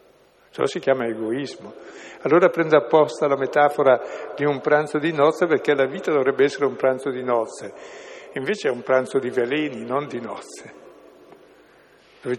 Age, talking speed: 60-79, 160 wpm